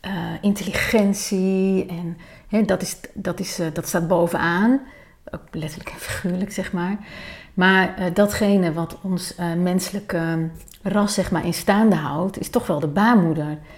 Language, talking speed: Dutch, 160 wpm